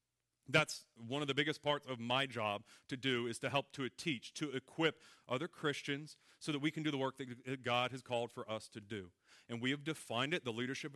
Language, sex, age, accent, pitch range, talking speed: English, male, 40-59, American, 120-145 Hz, 230 wpm